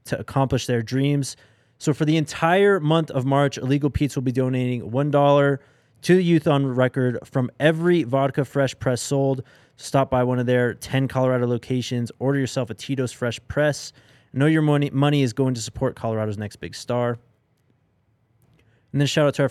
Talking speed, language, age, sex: 185 wpm, English, 20-39, male